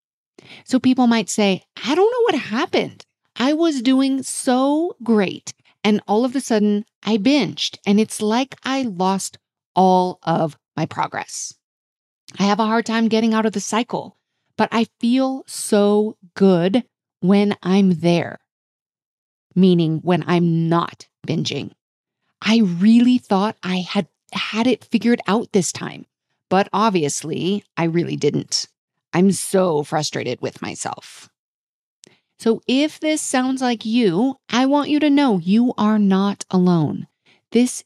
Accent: American